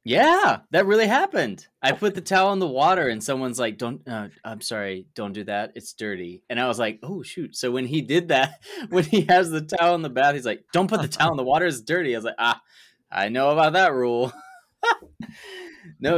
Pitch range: 110-165 Hz